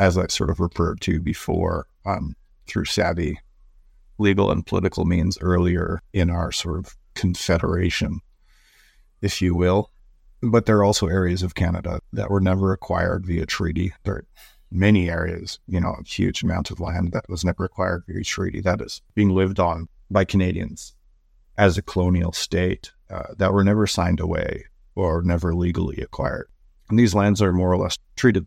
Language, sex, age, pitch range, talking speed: English, male, 40-59, 85-95 Hz, 175 wpm